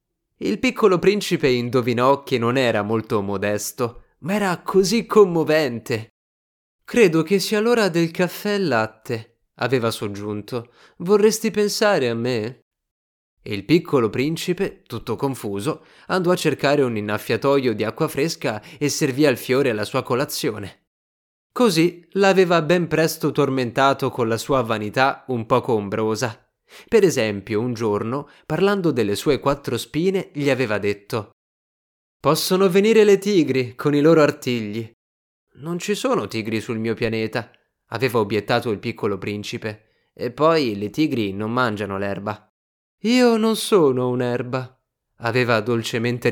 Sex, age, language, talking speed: male, 20-39, Italian, 135 wpm